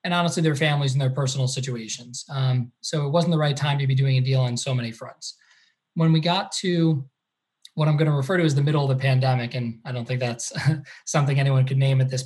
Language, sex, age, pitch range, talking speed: English, male, 20-39, 135-170 Hz, 250 wpm